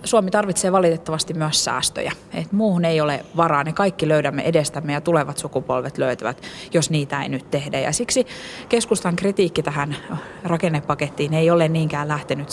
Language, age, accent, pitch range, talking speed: Finnish, 30-49, native, 145-175 Hz, 160 wpm